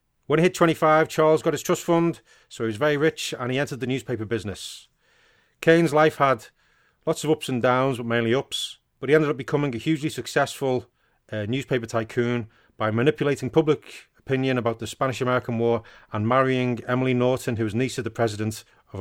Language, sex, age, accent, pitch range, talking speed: English, male, 30-49, British, 115-145 Hz, 195 wpm